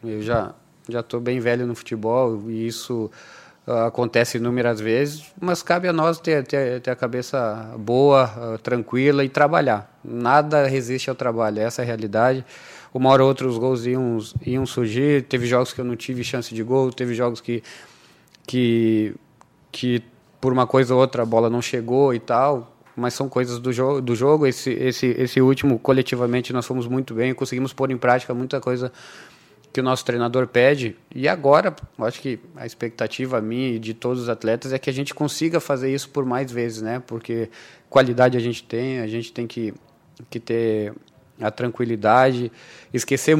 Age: 20-39